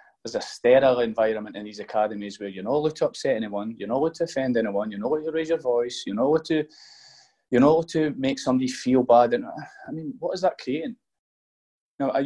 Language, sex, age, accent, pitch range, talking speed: English, male, 20-39, British, 105-175 Hz, 230 wpm